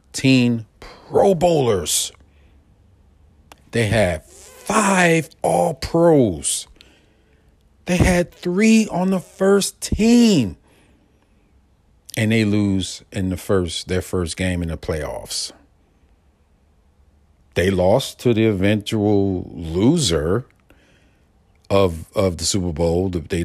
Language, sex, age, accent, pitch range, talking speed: English, male, 40-59, American, 80-110 Hz, 100 wpm